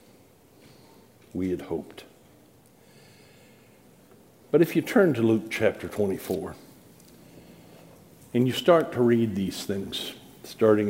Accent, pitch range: American, 110-135 Hz